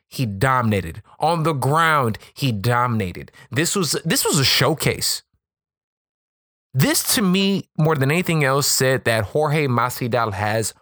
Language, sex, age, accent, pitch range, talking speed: English, male, 20-39, American, 120-180 Hz, 140 wpm